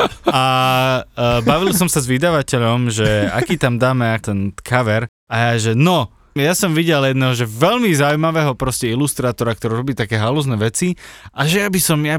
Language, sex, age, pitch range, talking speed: Slovak, male, 20-39, 120-175 Hz, 180 wpm